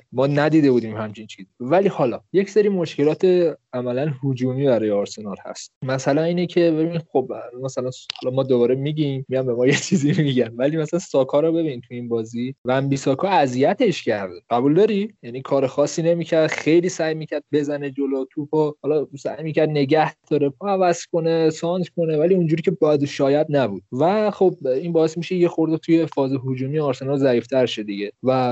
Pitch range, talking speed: 125-160 Hz, 180 wpm